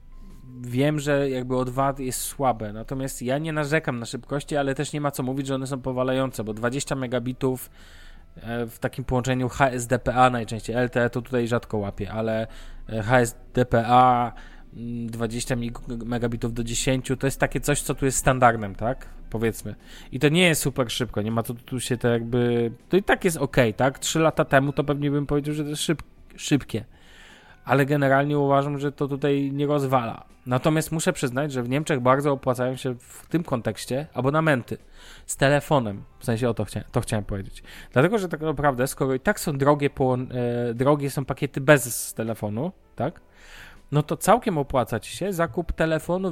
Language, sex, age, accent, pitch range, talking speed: Polish, male, 20-39, native, 120-145 Hz, 175 wpm